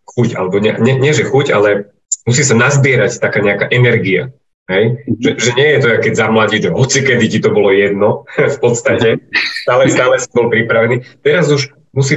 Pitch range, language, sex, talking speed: 105-145 Hz, Slovak, male, 170 wpm